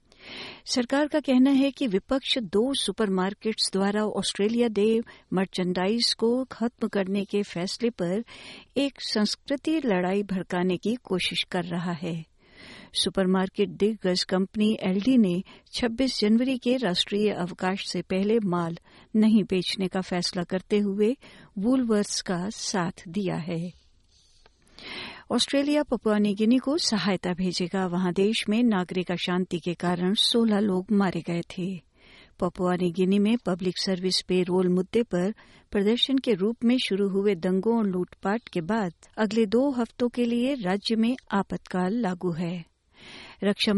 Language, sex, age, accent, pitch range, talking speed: Hindi, female, 60-79, native, 185-225 Hz, 140 wpm